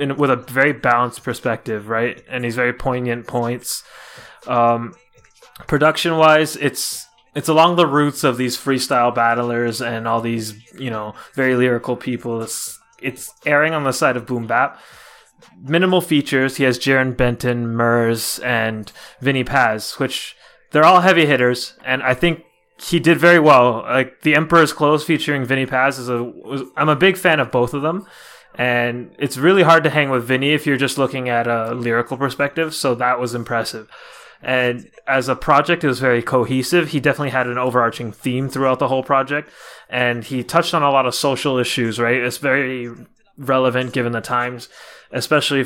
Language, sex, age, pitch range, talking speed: English, male, 20-39, 120-140 Hz, 180 wpm